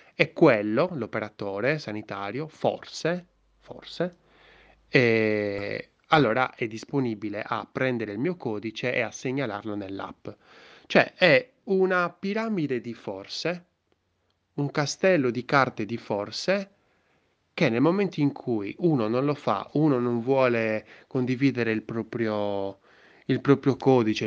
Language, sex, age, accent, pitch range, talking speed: Italian, male, 20-39, native, 110-140 Hz, 120 wpm